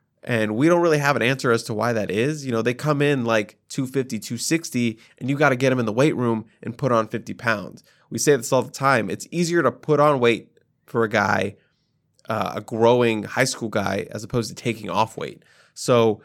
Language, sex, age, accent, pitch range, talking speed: English, male, 20-39, American, 115-145 Hz, 235 wpm